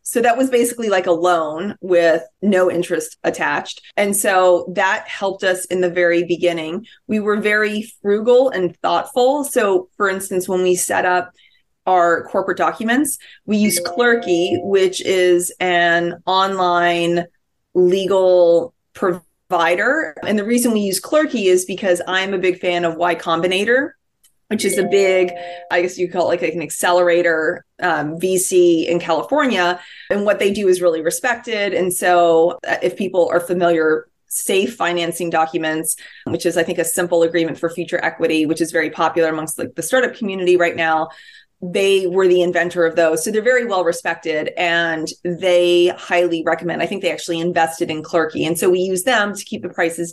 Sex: female